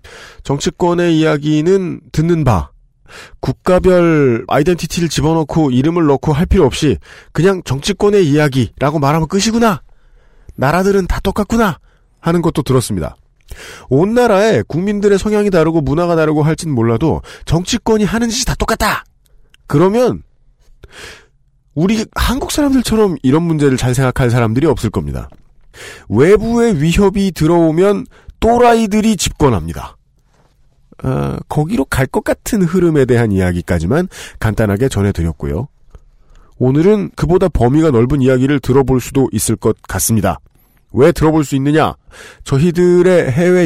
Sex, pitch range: male, 125-185 Hz